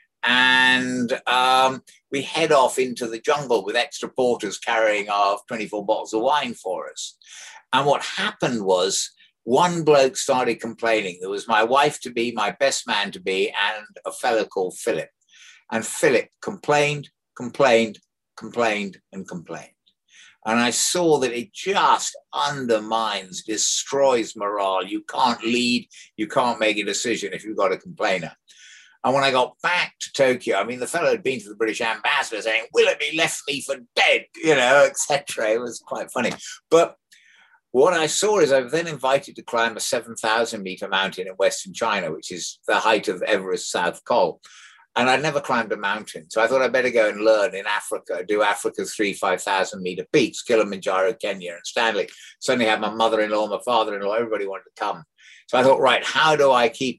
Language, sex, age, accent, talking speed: English, male, 60-79, British, 185 wpm